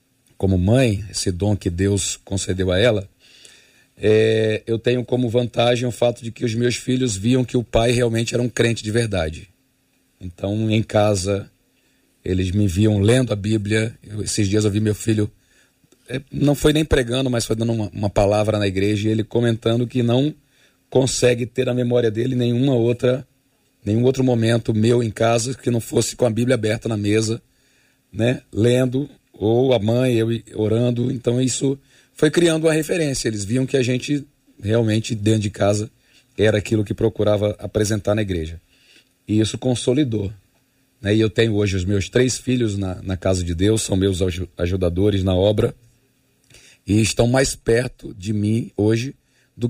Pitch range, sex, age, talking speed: 105-125 Hz, male, 40-59, 175 wpm